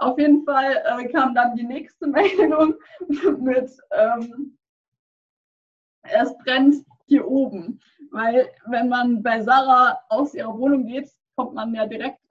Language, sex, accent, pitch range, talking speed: German, female, German, 255-320 Hz, 135 wpm